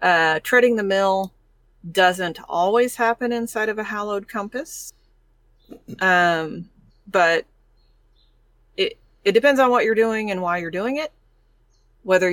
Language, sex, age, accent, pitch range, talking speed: English, female, 30-49, American, 165-195 Hz, 130 wpm